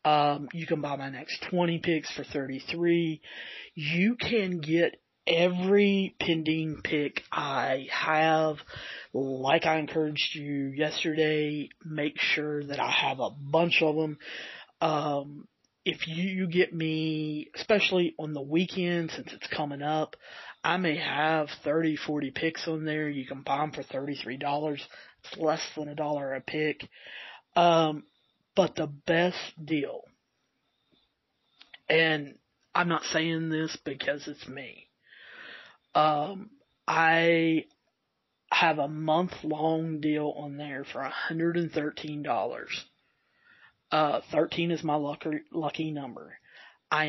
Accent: American